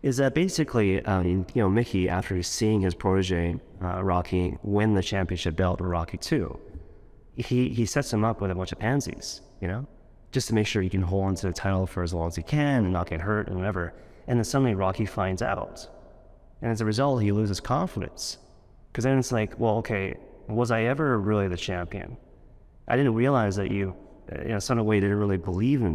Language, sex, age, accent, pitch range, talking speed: English, male, 30-49, American, 95-120 Hz, 215 wpm